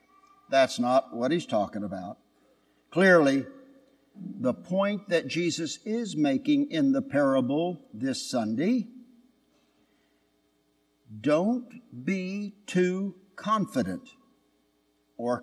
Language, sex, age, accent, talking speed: English, male, 60-79, American, 90 wpm